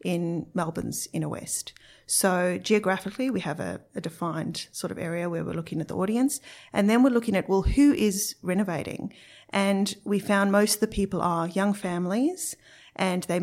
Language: English